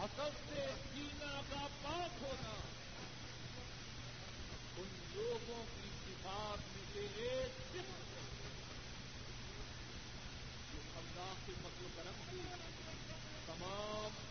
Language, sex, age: Urdu, male, 50-69